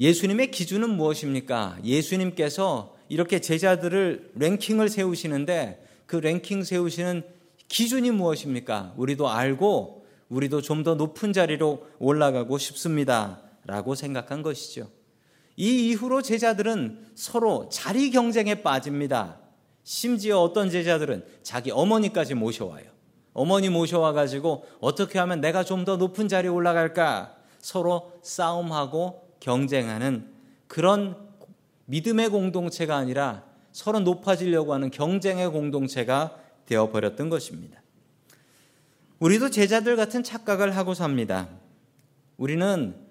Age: 40-59